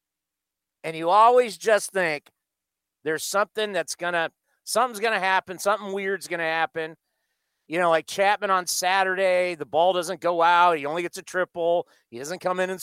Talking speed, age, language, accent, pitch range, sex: 185 wpm, 50-69, English, American, 140-190 Hz, male